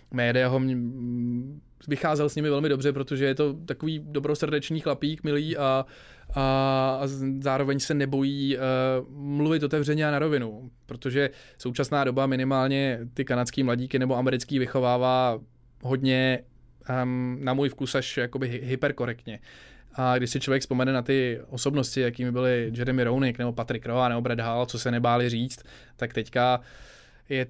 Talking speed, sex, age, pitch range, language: 145 wpm, male, 20-39, 125-140 Hz, Czech